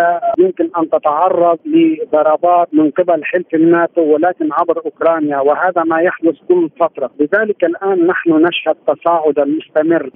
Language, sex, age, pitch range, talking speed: Arabic, male, 50-69, 155-185 Hz, 130 wpm